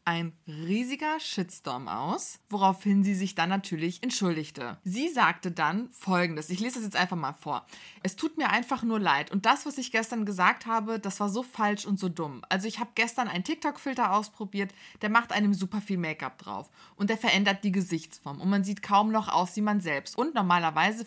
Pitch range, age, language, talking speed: 180-225 Hz, 20-39, German, 200 wpm